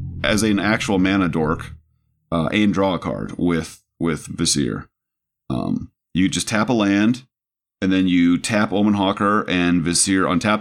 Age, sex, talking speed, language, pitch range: 30-49, male, 160 wpm, English, 80-100 Hz